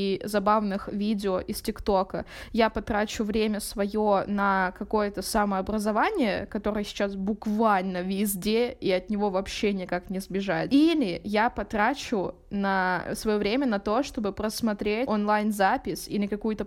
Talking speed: 135 wpm